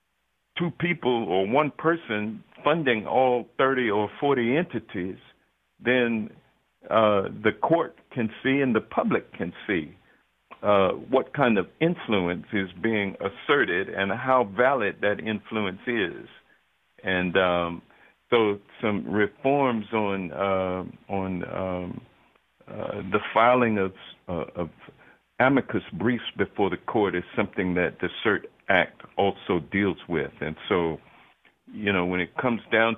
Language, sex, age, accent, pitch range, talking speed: English, male, 60-79, American, 95-125 Hz, 135 wpm